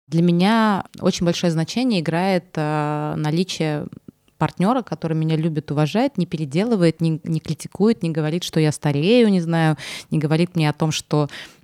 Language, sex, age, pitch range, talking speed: Russian, female, 20-39, 155-185 Hz, 160 wpm